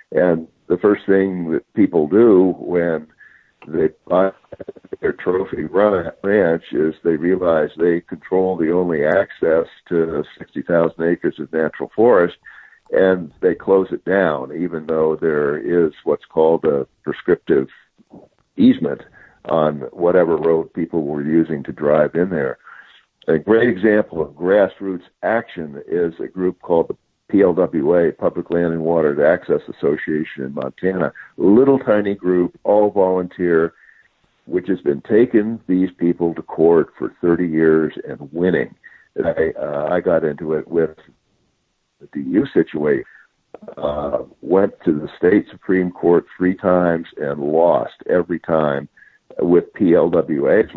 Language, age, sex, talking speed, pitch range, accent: English, 60-79, male, 130 wpm, 80-95 Hz, American